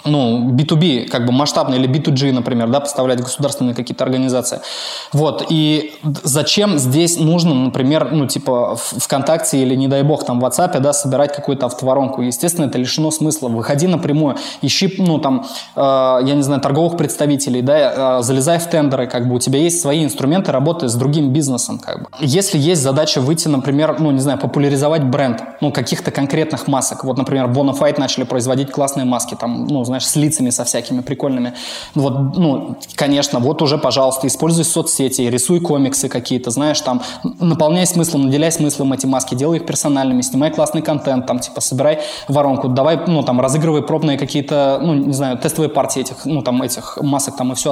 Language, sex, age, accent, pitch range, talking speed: Russian, male, 20-39, native, 130-155 Hz, 180 wpm